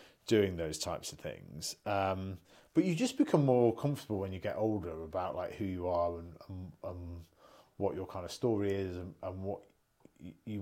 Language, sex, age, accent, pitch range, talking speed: English, male, 30-49, British, 85-120 Hz, 185 wpm